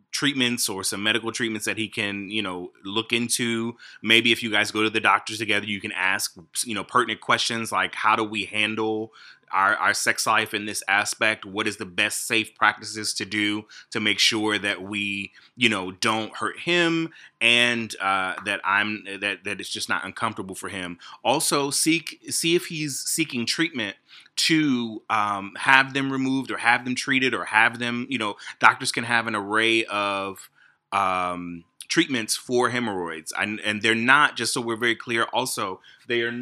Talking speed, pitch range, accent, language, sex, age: 185 wpm, 100-115 Hz, American, English, male, 30-49